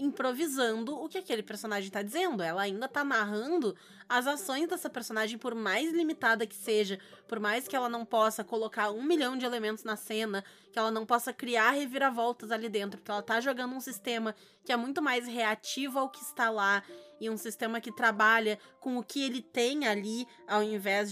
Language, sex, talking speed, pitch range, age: Portuguese, female, 195 wpm, 215-270 Hz, 20-39